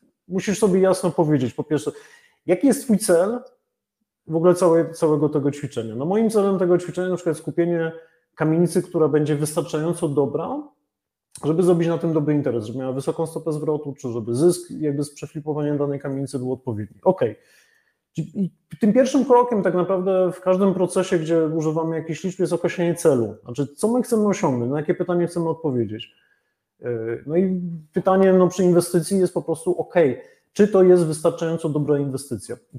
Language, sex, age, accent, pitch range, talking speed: Polish, male, 30-49, native, 145-190 Hz, 175 wpm